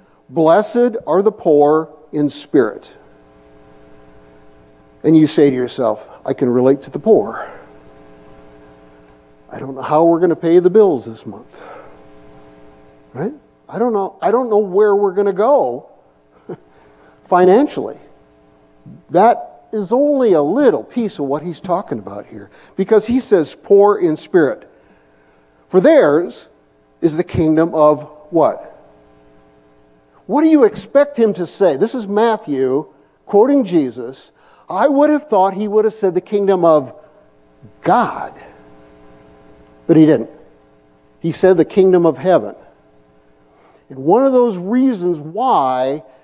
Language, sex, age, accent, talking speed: English, male, 50-69, American, 140 wpm